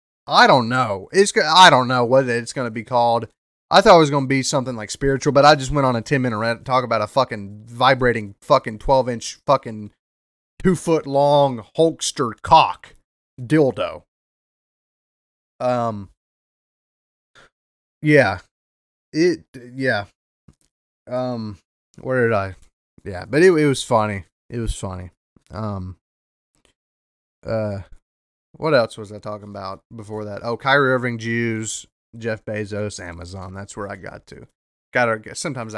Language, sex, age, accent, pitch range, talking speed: English, male, 30-49, American, 95-125 Hz, 145 wpm